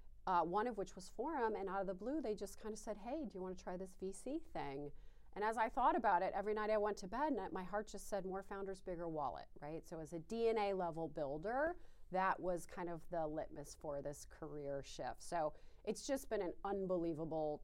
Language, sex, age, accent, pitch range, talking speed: English, female, 30-49, American, 170-210 Hz, 230 wpm